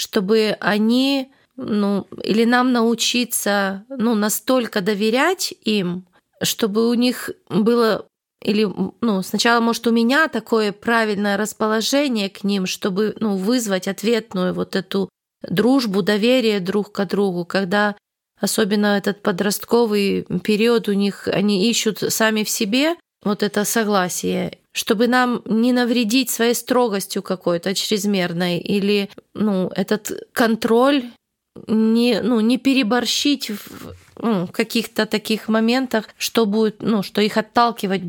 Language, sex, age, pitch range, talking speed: Russian, female, 20-39, 200-235 Hz, 120 wpm